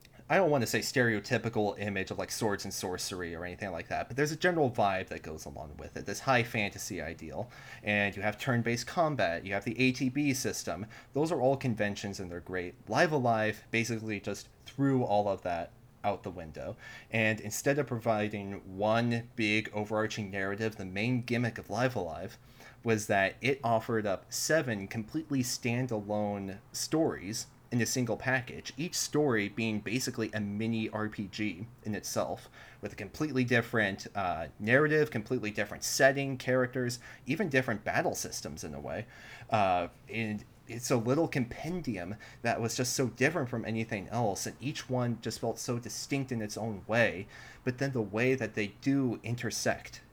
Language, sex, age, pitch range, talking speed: English, male, 30-49, 105-130 Hz, 170 wpm